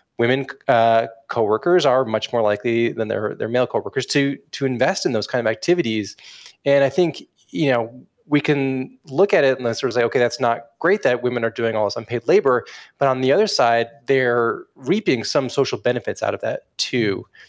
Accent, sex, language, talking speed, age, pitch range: American, male, English, 205 wpm, 20-39, 110-135 Hz